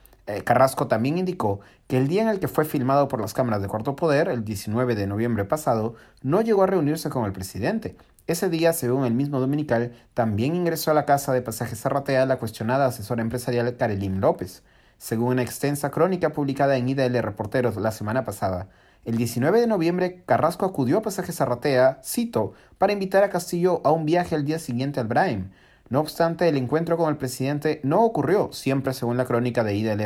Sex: male